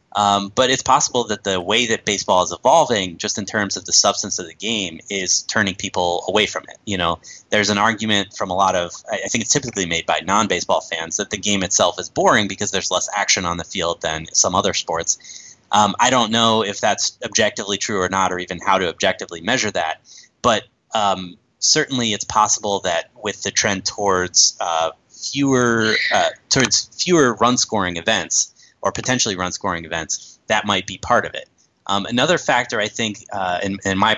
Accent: American